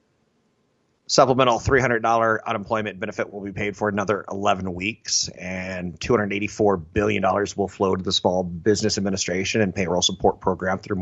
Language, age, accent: English, 30-49, American